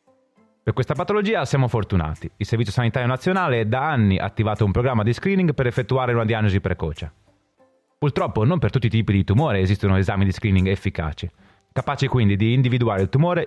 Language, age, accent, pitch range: Italian, 30-49, native, 100-135 Hz